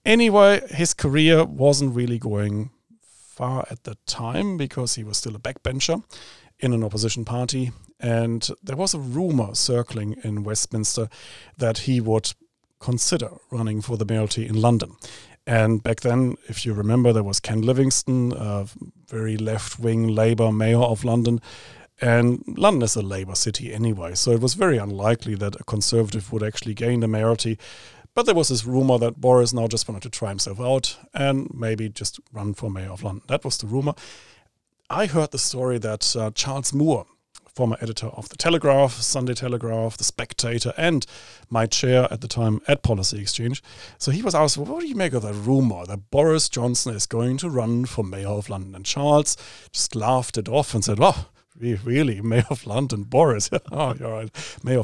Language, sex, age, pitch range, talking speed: English, male, 40-59, 110-130 Hz, 185 wpm